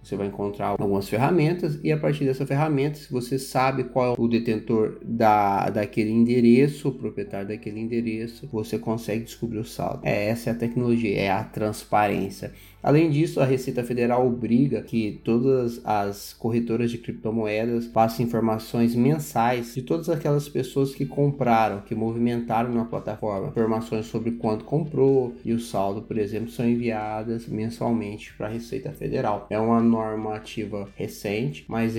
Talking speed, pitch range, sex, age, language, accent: 155 wpm, 105-120 Hz, male, 20-39, Portuguese, Brazilian